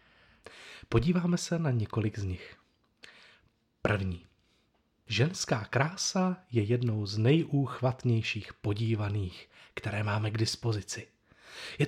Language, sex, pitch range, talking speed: Czech, male, 115-150 Hz, 95 wpm